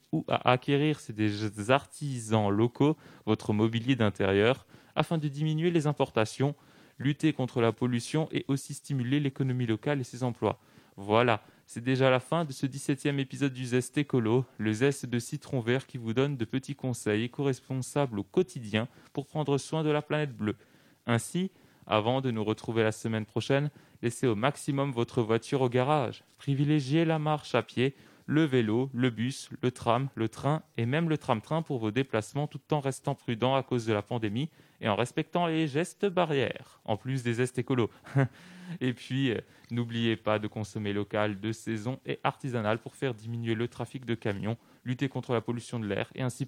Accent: French